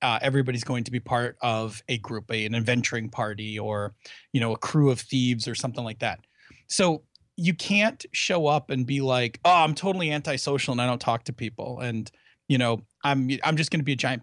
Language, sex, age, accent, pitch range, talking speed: English, male, 30-49, American, 125-160 Hz, 220 wpm